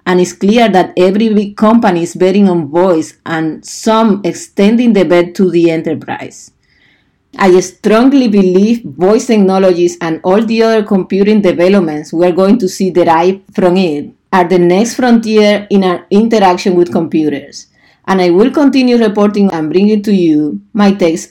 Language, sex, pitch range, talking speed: English, female, 175-225 Hz, 160 wpm